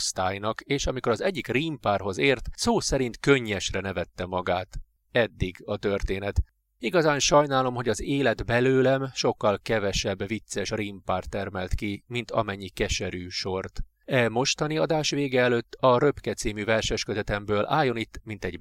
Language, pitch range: Hungarian, 95-130 Hz